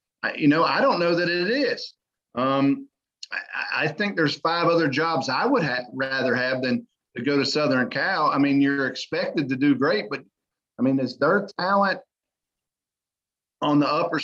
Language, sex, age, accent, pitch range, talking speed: English, male, 40-59, American, 135-170 Hz, 175 wpm